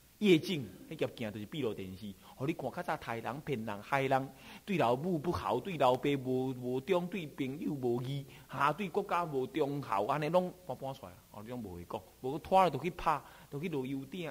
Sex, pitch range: male, 115-165 Hz